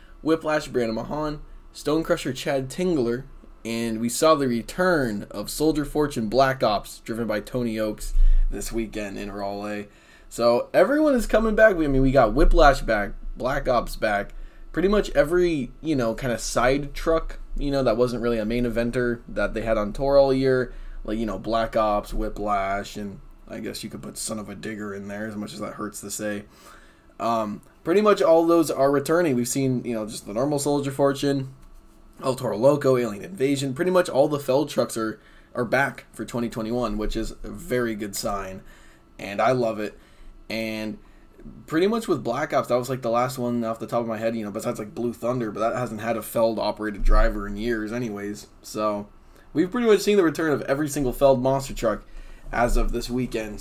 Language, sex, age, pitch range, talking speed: English, male, 20-39, 110-140 Hz, 205 wpm